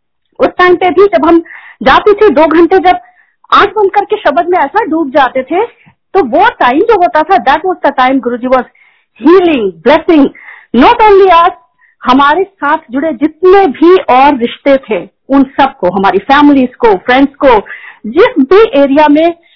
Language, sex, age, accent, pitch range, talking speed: Hindi, female, 50-69, native, 255-365 Hz, 165 wpm